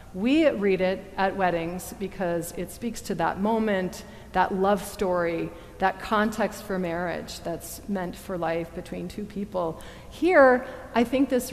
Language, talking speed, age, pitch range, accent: English, 150 wpm, 40-59, 180-225 Hz, American